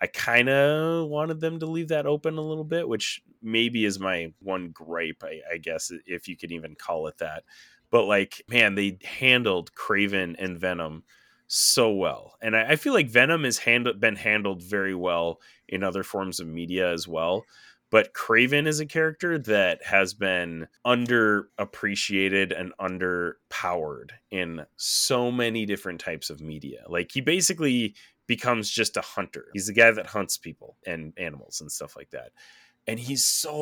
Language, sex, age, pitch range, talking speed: English, male, 20-39, 95-125 Hz, 175 wpm